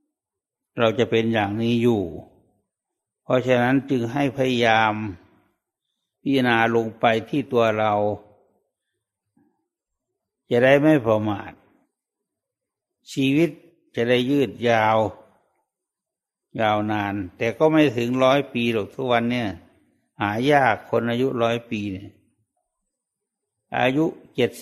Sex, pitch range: male, 115-140 Hz